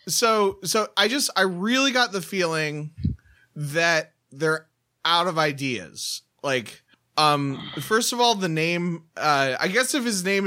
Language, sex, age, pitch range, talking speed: English, male, 20-39, 150-195 Hz, 155 wpm